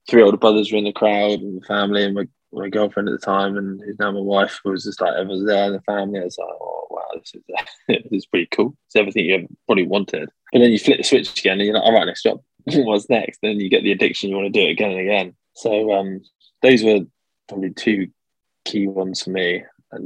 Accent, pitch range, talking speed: British, 95-105 Hz, 260 wpm